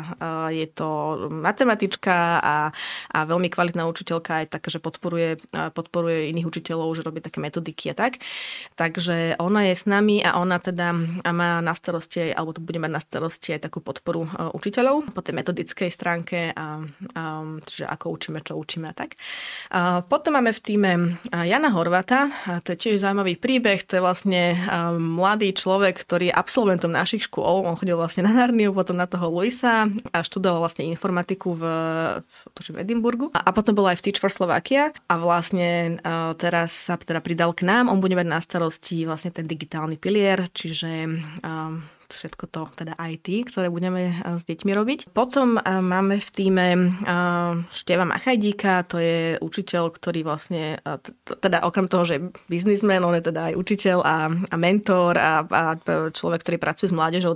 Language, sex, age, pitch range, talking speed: Slovak, female, 20-39, 165-195 Hz, 170 wpm